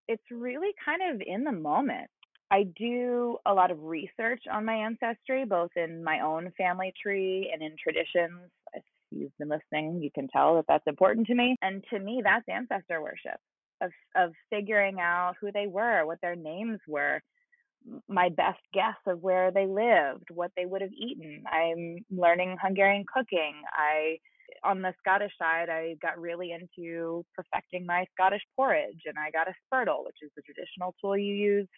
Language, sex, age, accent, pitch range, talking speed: English, female, 20-39, American, 165-225 Hz, 180 wpm